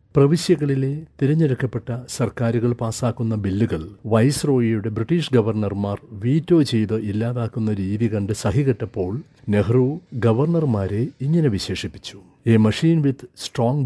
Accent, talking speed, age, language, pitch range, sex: native, 100 wpm, 60-79, Malayalam, 110-140 Hz, male